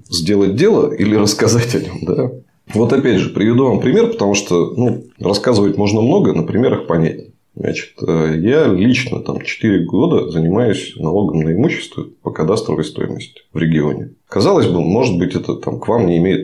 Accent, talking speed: native, 170 wpm